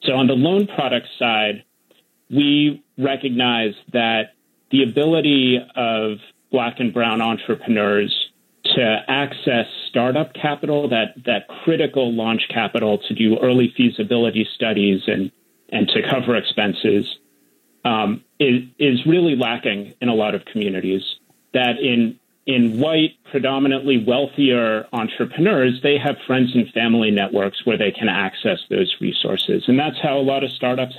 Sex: male